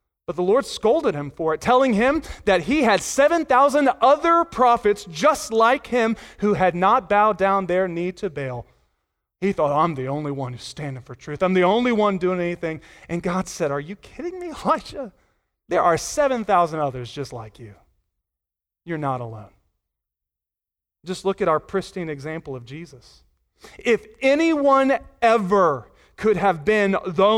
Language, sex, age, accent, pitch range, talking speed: English, male, 30-49, American, 155-230 Hz, 165 wpm